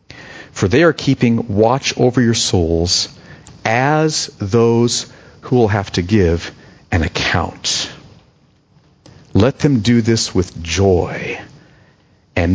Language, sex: English, male